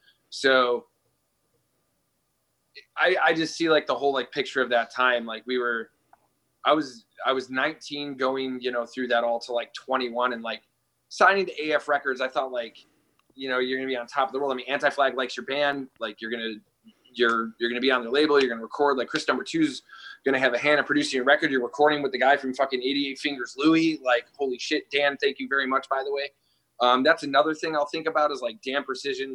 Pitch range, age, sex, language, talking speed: 125-155 Hz, 20-39, male, English, 230 wpm